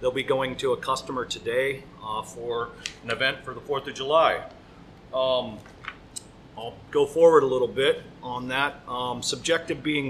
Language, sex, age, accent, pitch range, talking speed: English, male, 40-59, American, 125-150 Hz, 165 wpm